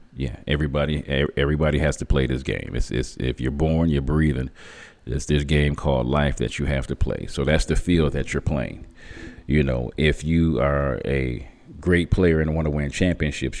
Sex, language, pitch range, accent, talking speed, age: male, English, 70-80 Hz, American, 200 wpm, 40-59